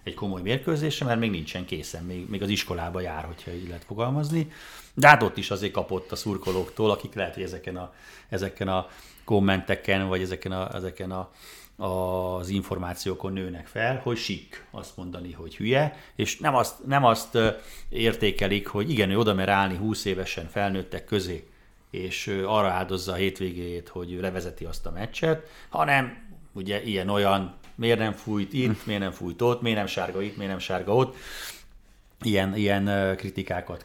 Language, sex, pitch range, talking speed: Hungarian, male, 95-115 Hz, 170 wpm